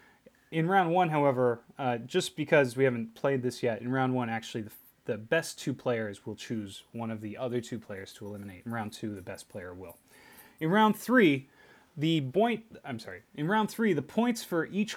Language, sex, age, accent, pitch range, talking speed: English, male, 20-39, American, 130-195 Hz, 215 wpm